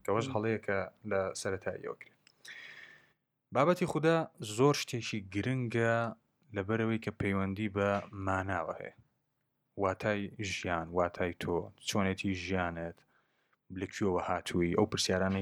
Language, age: Arabic, 20-39